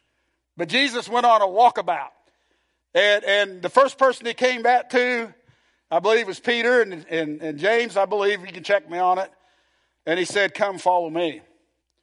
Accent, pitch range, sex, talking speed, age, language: American, 195-245 Hz, male, 185 wpm, 50-69, English